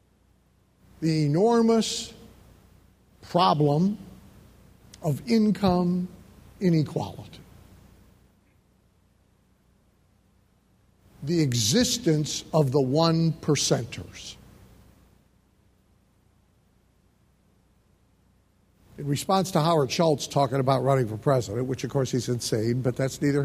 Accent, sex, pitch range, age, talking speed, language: American, male, 100-150 Hz, 60-79, 75 wpm, English